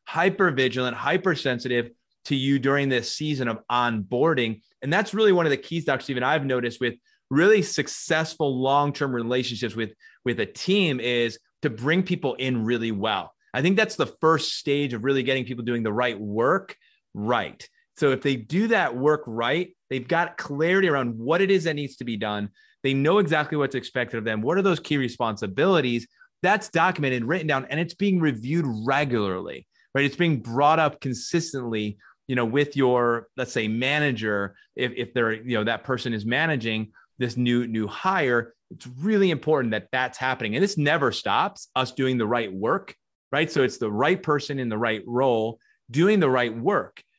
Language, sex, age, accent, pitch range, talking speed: English, male, 30-49, American, 120-160 Hz, 190 wpm